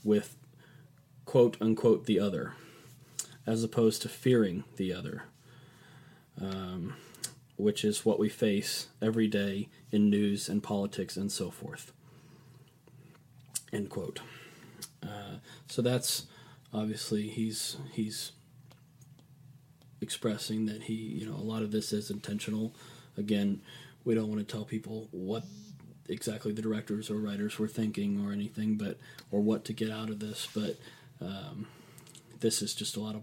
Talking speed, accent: 140 wpm, American